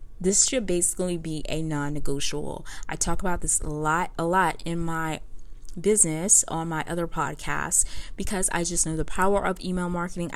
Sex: female